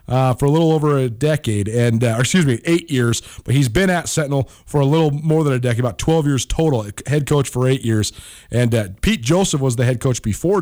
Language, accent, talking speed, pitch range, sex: English, American, 250 wpm, 115-140 Hz, male